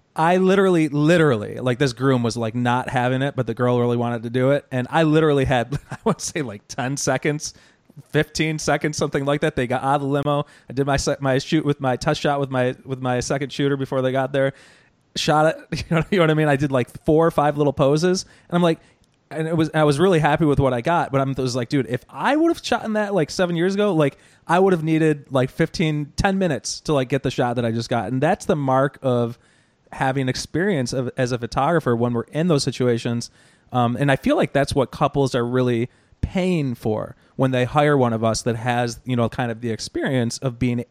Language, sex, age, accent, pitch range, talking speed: English, male, 20-39, American, 125-155 Hz, 245 wpm